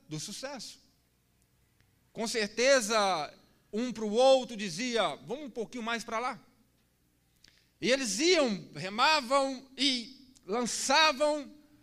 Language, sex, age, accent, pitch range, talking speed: Portuguese, male, 40-59, Brazilian, 175-280 Hz, 105 wpm